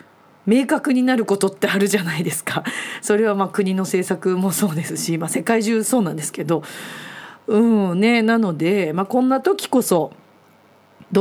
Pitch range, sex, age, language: 175-235 Hz, female, 40-59, Japanese